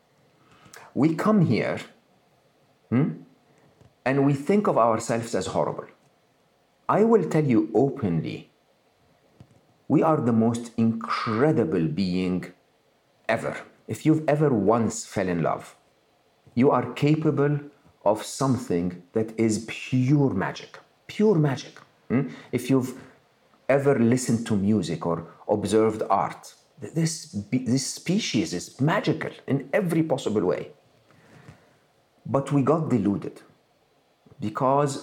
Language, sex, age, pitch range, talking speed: English, male, 50-69, 110-145 Hz, 110 wpm